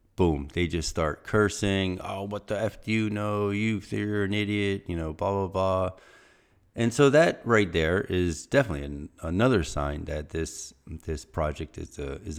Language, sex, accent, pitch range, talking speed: English, male, American, 80-105 Hz, 175 wpm